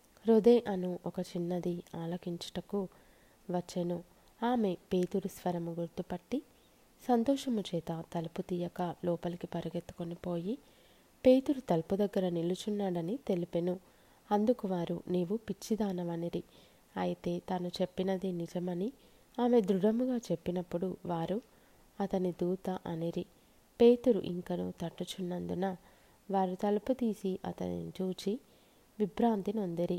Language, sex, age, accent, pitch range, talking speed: Telugu, female, 20-39, native, 175-210 Hz, 90 wpm